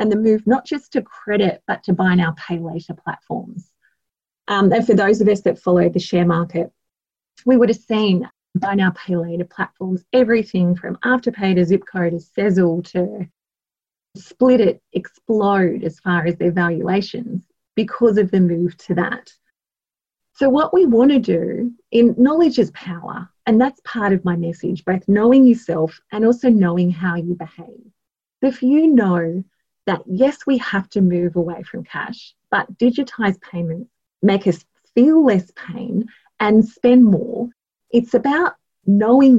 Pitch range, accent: 180-235 Hz, Australian